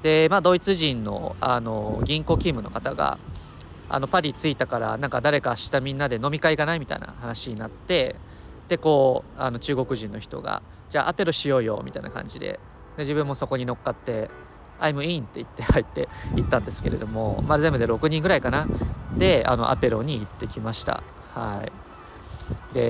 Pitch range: 115-165 Hz